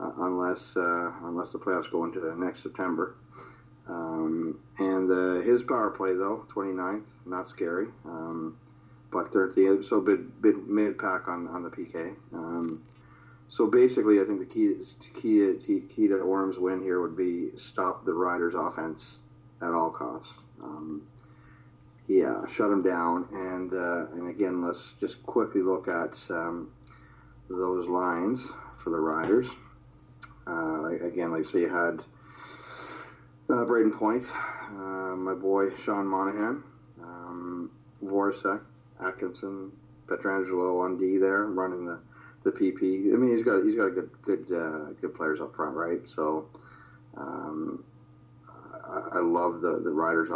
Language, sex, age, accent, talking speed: English, male, 40-59, American, 145 wpm